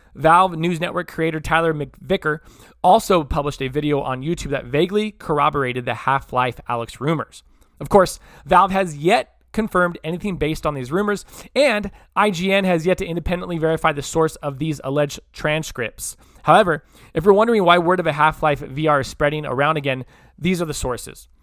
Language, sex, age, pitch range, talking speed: English, male, 20-39, 140-180 Hz, 170 wpm